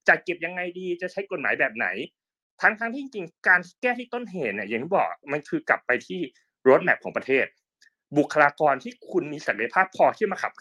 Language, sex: Thai, male